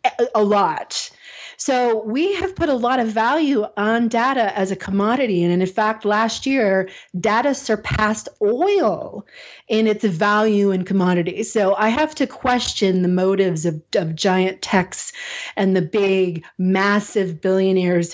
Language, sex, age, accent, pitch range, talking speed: English, female, 30-49, American, 185-220 Hz, 145 wpm